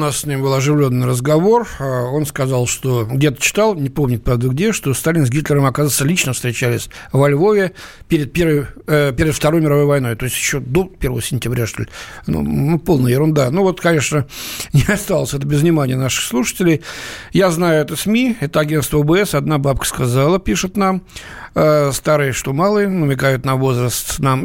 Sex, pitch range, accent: male, 130-160 Hz, native